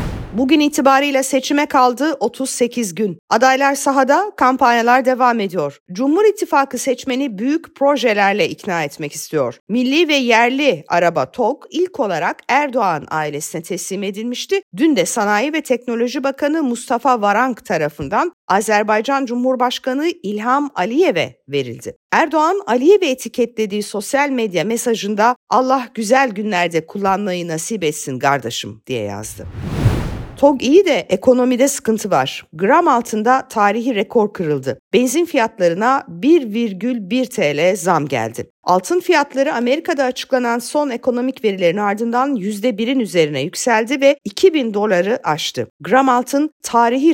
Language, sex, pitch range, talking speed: Turkish, female, 190-275 Hz, 120 wpm